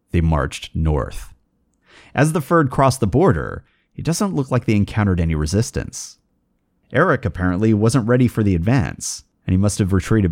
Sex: male